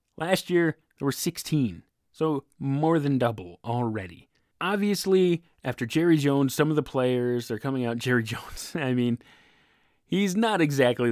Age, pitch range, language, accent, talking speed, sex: 30-49, 120-170 Hz, English, American, 155 wpm, male